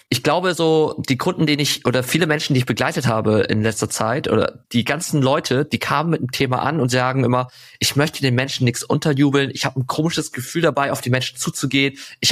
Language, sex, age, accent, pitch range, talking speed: German, male, 20-39, German, 115-145 Hz, 230 wpm